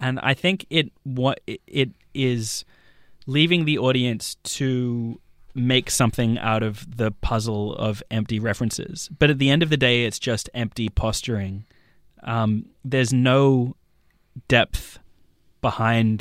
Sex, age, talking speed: male, 20-39, 135 wpm